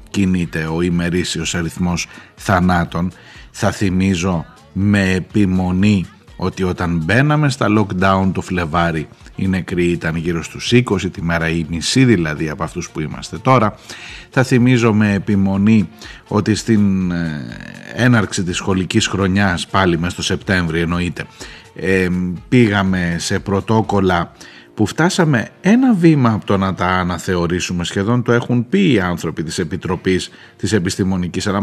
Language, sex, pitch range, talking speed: Greek, male, 90-110 Hz, 135 wpm